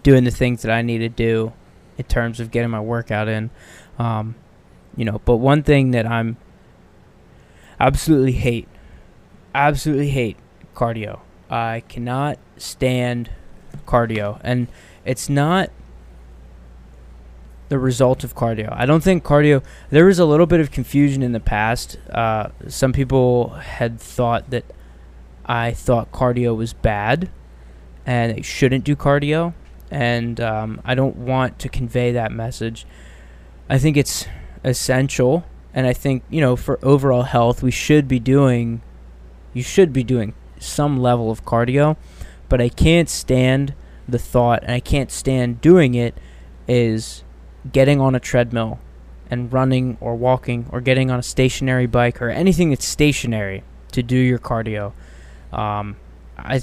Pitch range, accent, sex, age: 110-130 Hz, American, male, 20-39